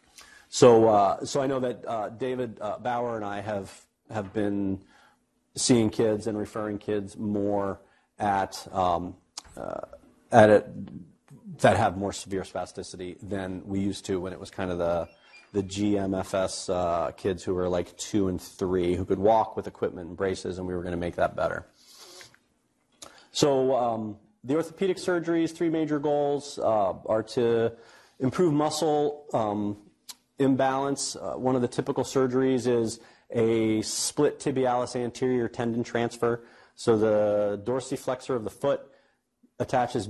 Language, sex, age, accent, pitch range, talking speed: English, male, 40-59, American, 100-130 Hz, 150 wpm